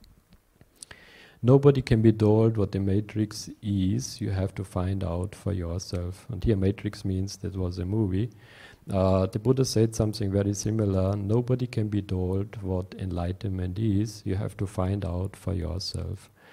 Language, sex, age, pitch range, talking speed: English, male, 50-69, 95-105 Hz, 165 wpm